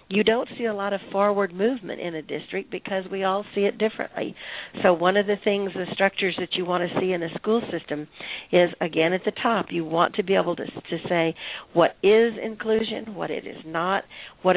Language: English